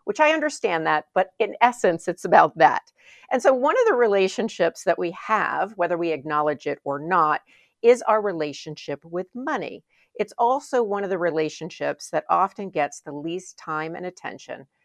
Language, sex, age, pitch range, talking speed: English, female, 50-69, 160-230 Hz, 180 wpm